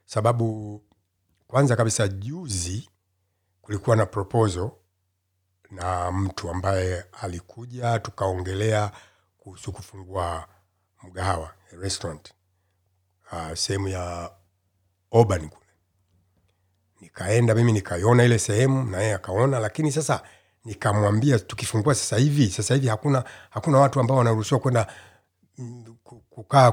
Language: Swahili